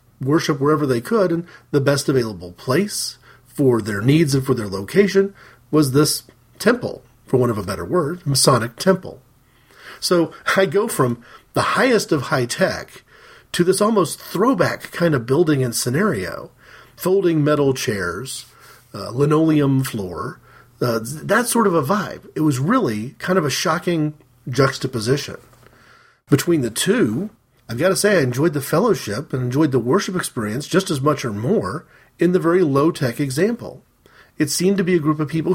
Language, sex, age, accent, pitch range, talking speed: English, male, 40-59, American, 125-165 Hz, 165 wpm